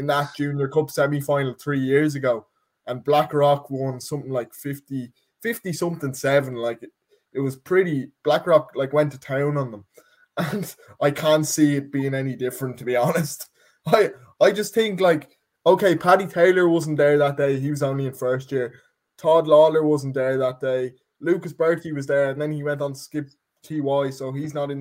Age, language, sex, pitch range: 20-39, English, male, 130-155 Hz